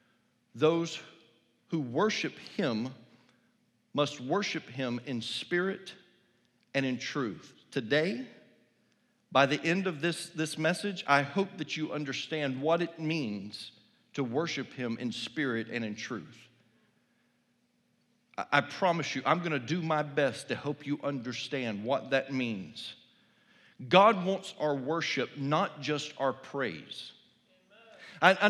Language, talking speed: English, 130 wpm